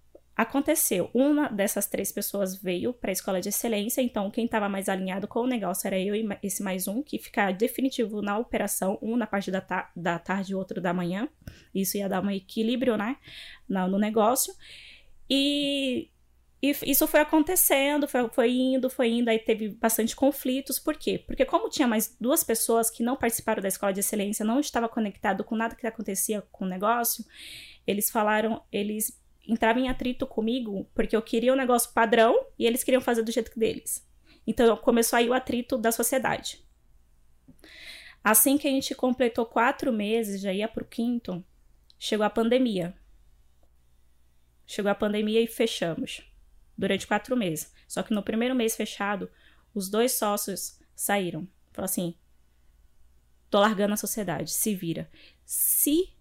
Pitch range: 195-250 Hz